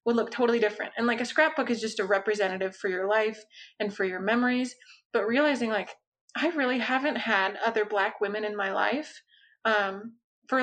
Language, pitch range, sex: English, 205-240 Hz, female